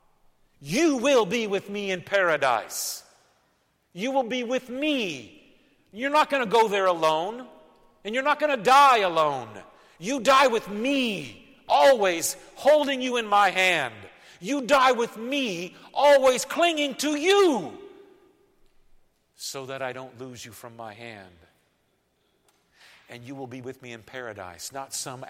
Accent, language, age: American, English, 50-69